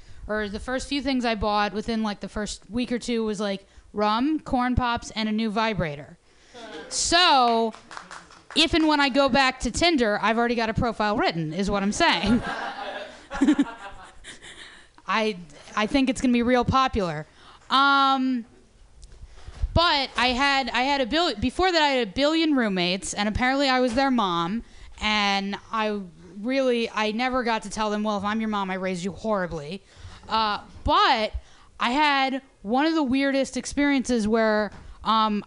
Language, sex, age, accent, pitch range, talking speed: English, female, 20-39, American, 210-270 Hz, 170 wpm